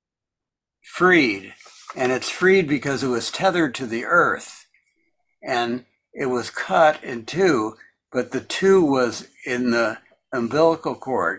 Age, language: 60-79, English